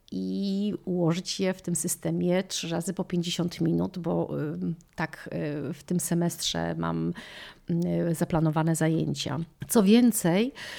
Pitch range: 165-195 Hz